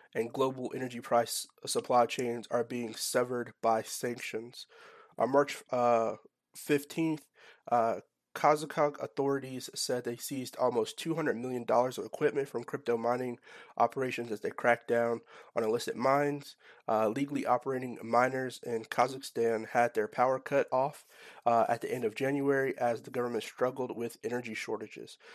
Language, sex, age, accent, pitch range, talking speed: English, male, 30-49, American, 115-135 Hz, 145 wpm